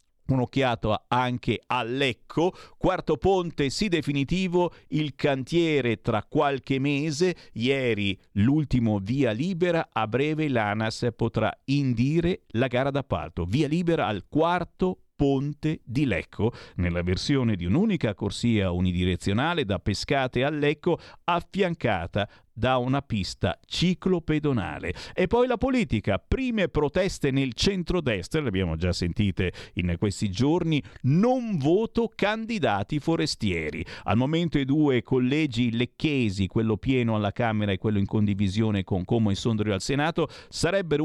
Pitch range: 105-160 Hz